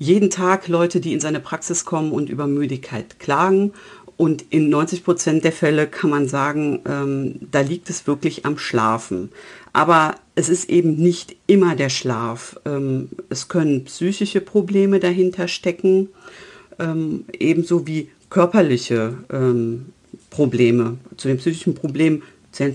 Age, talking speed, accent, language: 50-69, 140 wpm, German, German